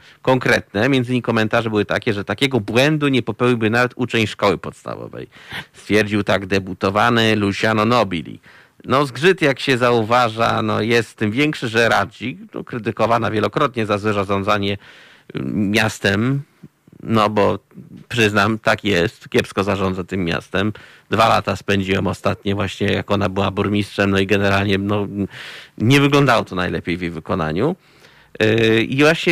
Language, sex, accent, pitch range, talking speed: Polish, male, native, 105-125 Hz, 140 wpm